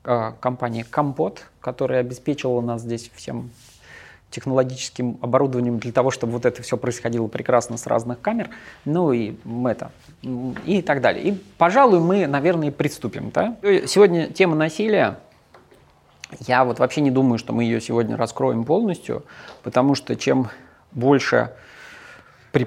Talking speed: 130 wpm